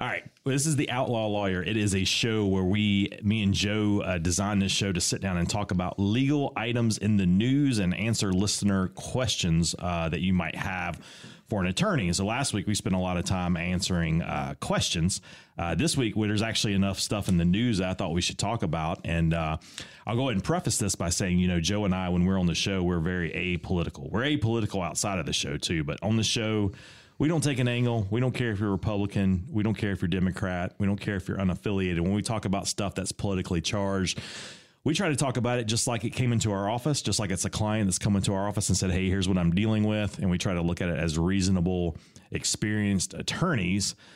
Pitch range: 90-110 Hz